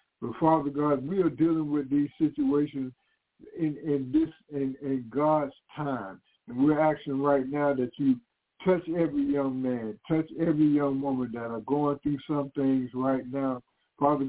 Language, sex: English, male